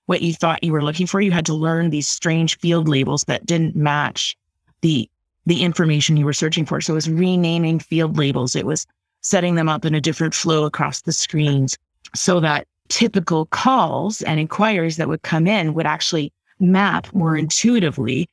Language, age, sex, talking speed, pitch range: English, 30-49, female, 190 wpm, 150-175 Hz